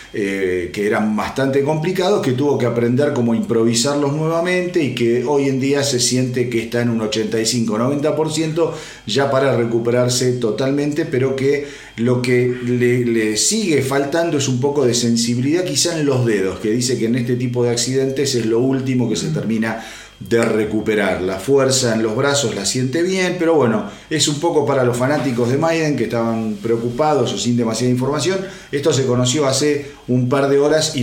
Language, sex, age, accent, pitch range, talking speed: Spanish, male, 40-59, Argentinian, 115-140 Hz, 185 wpm